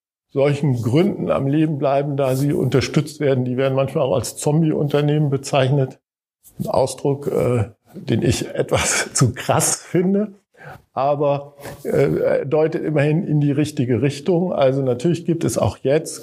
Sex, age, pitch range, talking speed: male, 50-69, 125-155 Hz, 145 wpm